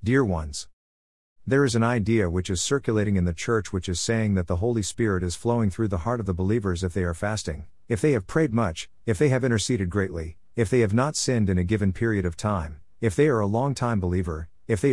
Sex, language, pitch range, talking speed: male, English, 90-115 Hz, 240 wpm